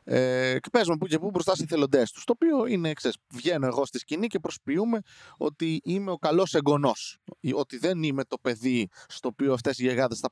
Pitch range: 125-190 Hz